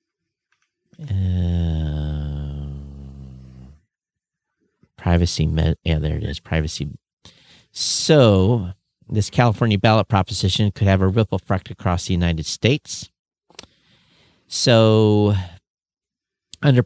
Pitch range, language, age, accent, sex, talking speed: 90-120 Hz, English, 50-69, American, male, 80 wpm